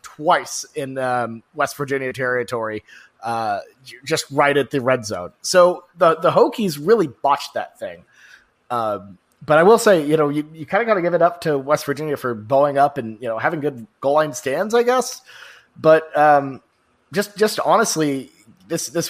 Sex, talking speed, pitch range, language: male, 190 wpm, 130-170 Hz, English